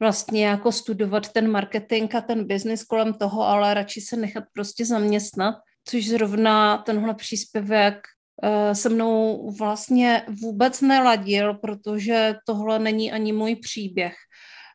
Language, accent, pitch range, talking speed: Czech, native, 205-230 Hz, 125 wpm